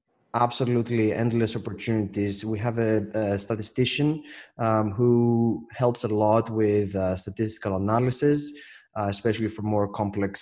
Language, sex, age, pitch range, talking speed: English, male, 20-39, 100-115 Hz, 125 wpm